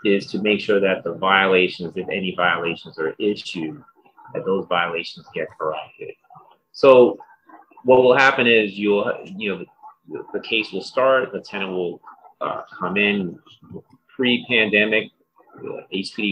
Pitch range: 95-135 Hz